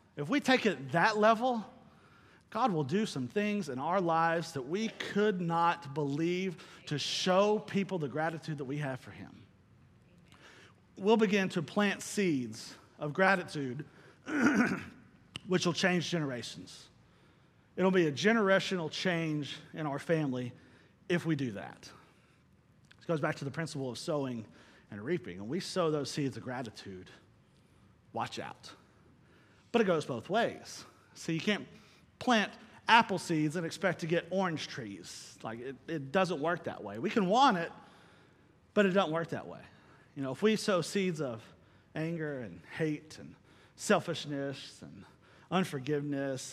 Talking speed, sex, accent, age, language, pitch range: 155 wpm, male, American, 40-59, English, 145-195 Hz